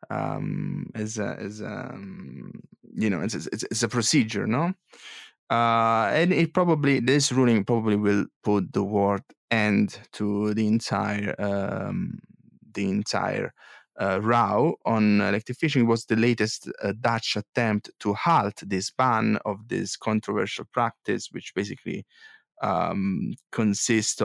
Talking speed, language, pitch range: 140 wpm, English, 105-135 Hz